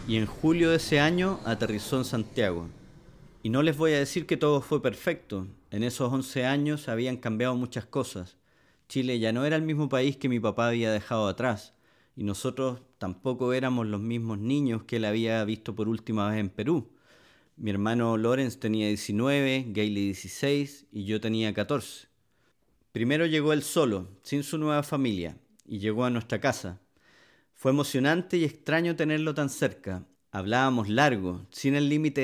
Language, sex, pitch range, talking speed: English, male, 110-140 Hz, 170 wpm